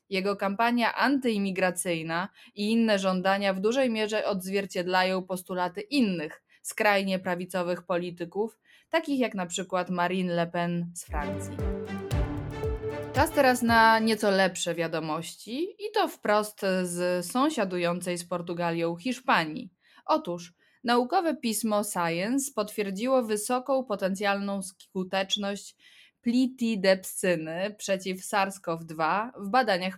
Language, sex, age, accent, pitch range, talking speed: Polish, female, 20-39, native, 180-225 Hz, 100 wpm